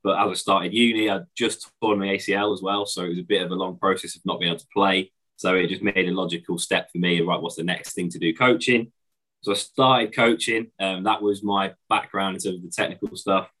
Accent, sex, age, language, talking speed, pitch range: British, male, 20-39, English, 260 wpm, 85-100 Hz